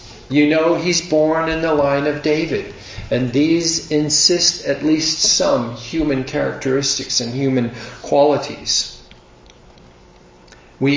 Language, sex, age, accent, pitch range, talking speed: English, male, 50-69, American, 120-155 Hz, 115 wpm